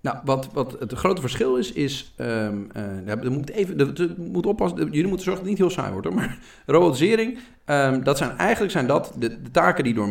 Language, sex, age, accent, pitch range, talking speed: Dutch, male, 40-59, Dutch, 105-135 Hz, 235 wpm